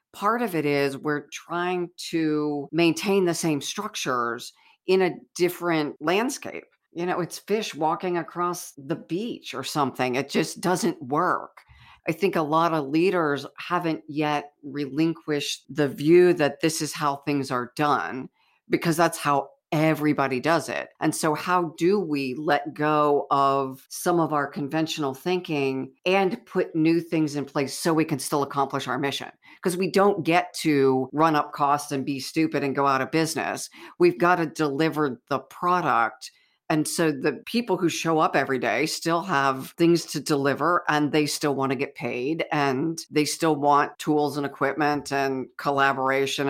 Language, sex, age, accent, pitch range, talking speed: English, female, 50-69, American, 140-170 Hz, 170 wpm